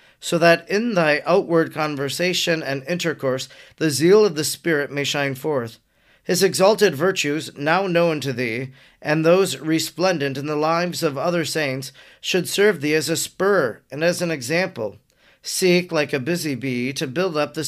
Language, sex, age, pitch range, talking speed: English, male, 40-59, 140-175 Hz, 175 wpm